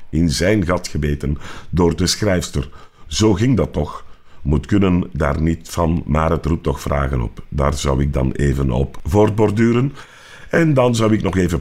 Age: 50-69